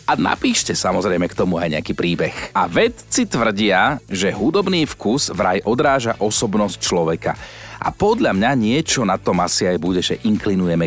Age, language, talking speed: 40-59, Slovak, 160 wpm